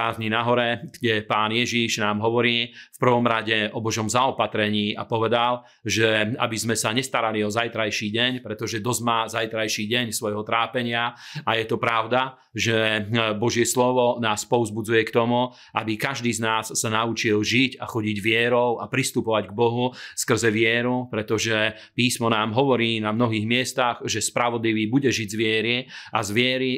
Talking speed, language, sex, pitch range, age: 160 wpm, Slovak, male, 110-125 Hz, 40-59